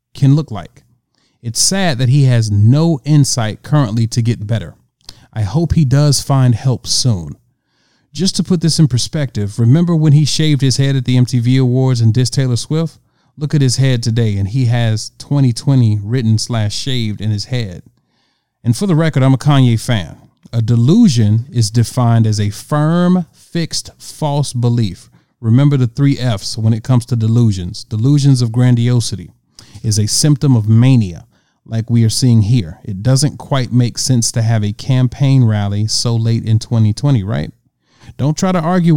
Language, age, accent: English, 40-59, American